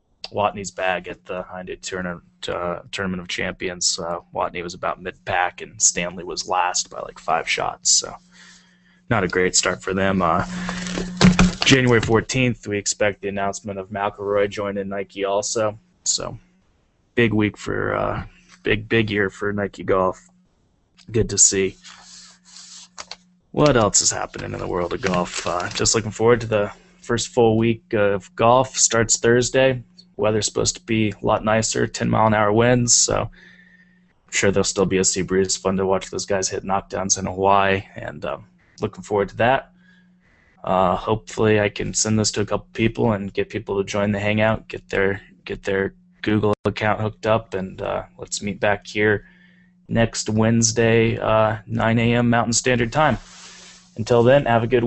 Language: English